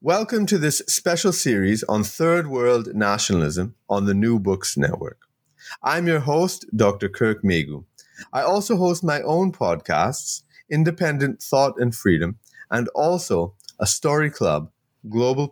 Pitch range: 100-150 Hz